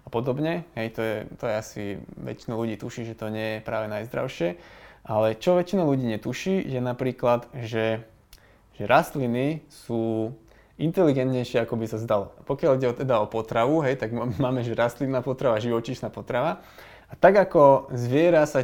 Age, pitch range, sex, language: 20-39, 115-135 Hz, male, Slovak